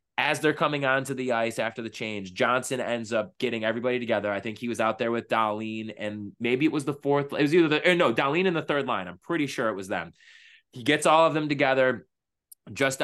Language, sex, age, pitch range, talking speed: English, male, 20-39, 110-135 Hz, 240 wpm